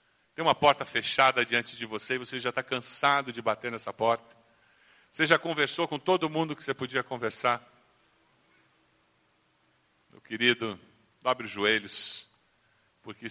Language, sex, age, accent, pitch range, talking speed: Portuguese, male, 50-69, Brazilian, 105-135 Hz, 145 wpm